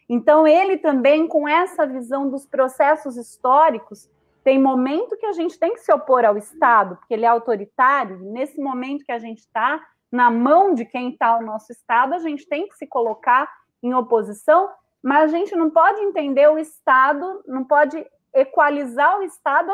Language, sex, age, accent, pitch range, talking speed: Portuguese, female, 30-49, Brazilian, 240-310 Hz, 180 wpm